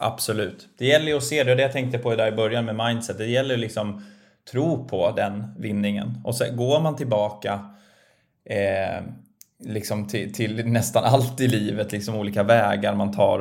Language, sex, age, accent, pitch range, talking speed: Swedish, male, 20-39, native, 100-125 Hz, 190 wpm